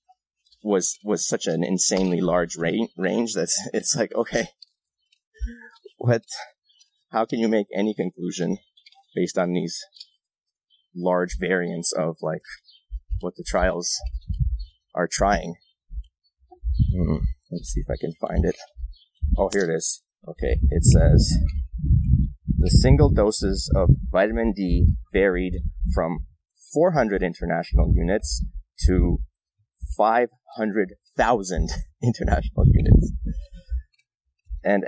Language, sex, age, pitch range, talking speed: English, male, 30-49, 75-105 Hz, 105 wpm